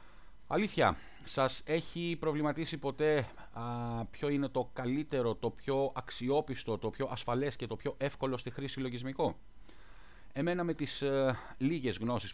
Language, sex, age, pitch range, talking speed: English, male, 30-49, 115-140 Hz, 140 wpm